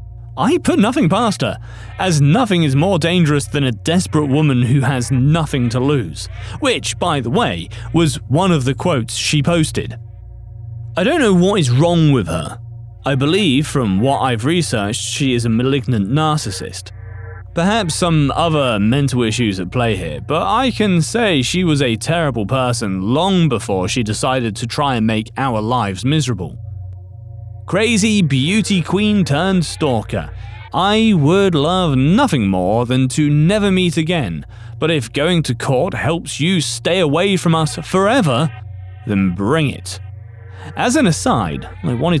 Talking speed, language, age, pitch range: 160 wpm, English, 30-49, 110-160 Hz